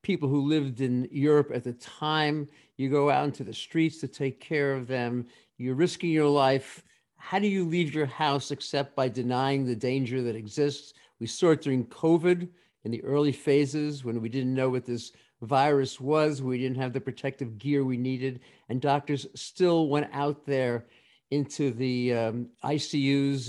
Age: 50-69